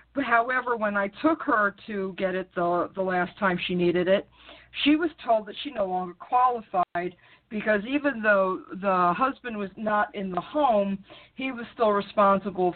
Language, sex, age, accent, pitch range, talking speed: English, female, 50-69, American, 180-230 Hz, 175 wpm